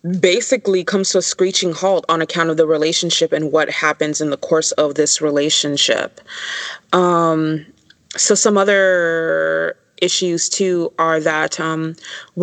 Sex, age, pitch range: female, 20-39, 155-180 Hz